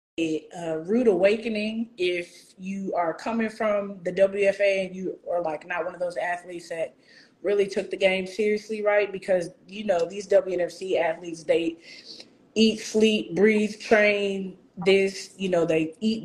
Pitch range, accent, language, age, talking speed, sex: 175-215 Hz, American, English, 20-39, 155 wpm, female